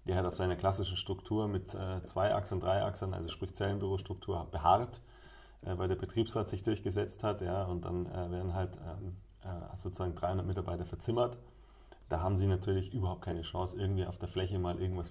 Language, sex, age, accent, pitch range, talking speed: German, male, 30-49, German, 85-95 Hz, 190 wpm